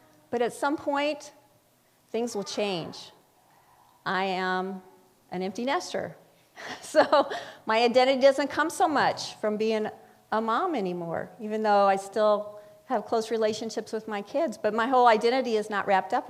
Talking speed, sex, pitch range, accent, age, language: 155 wpm, female, 180-250 Hz, American, 40-59, English